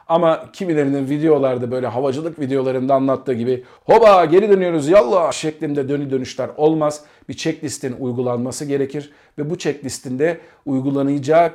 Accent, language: native, Turkish